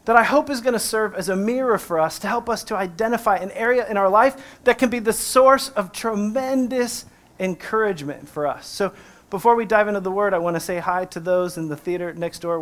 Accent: American